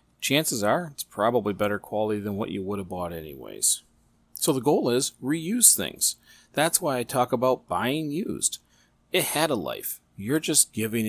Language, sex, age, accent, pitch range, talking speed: English, male, 40-59, American, 100-130 Hz, 180 wpm